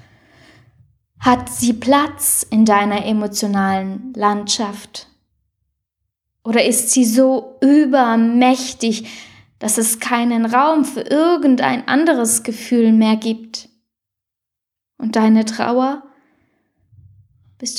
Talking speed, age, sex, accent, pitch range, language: 90 wpm, 10-29, female, German, 215-265 Hz, German